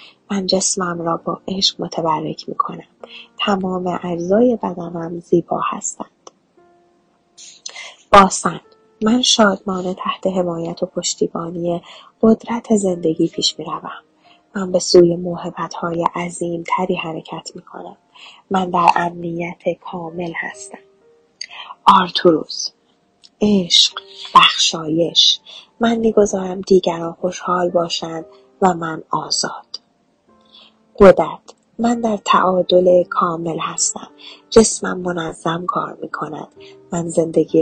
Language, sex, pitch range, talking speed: Persian, female, 170-200 Hz, 100 wpm